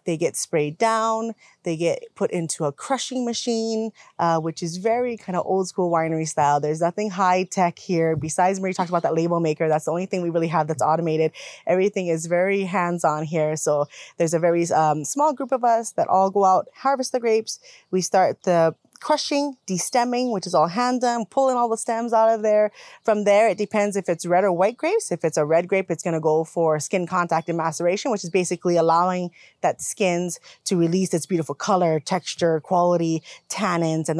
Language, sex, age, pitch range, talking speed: English, female, 20-39, 165-215 Hz, 205 wpm